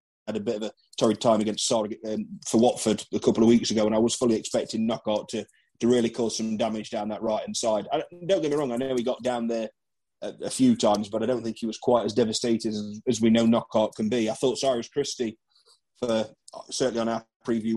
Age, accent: 30-49, British